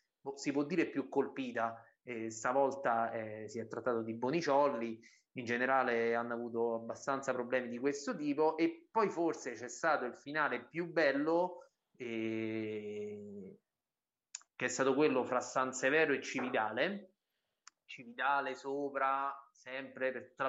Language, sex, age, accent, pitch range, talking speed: Italian, male, 30-49, native, 125-165 Hz, 135 wpm